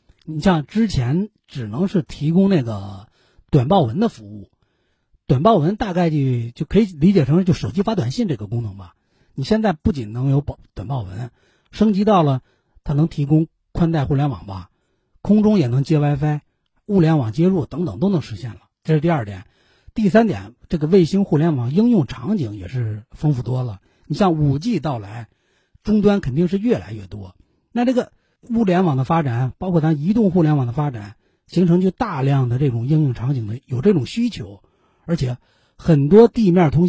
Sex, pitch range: male, 120-180 Hz